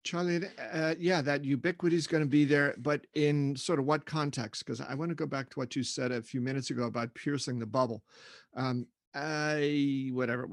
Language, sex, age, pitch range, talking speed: English, male, 40-59, 130-165 Hz, 215 wpm